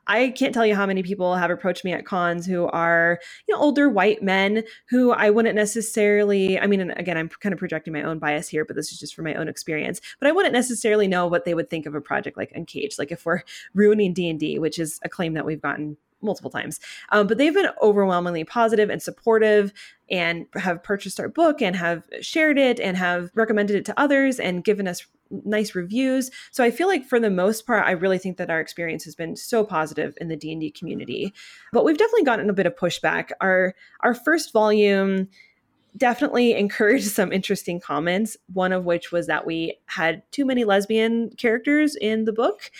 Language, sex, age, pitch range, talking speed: English, female, 20-39, 175-230 Hz, 210 wpm